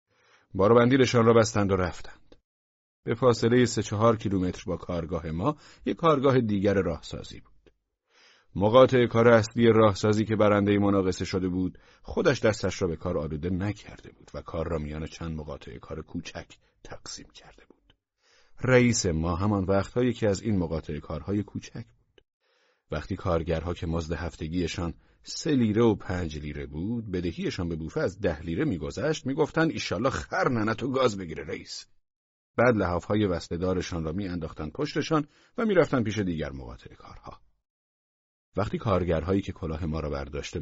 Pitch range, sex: 85-115 Hz, male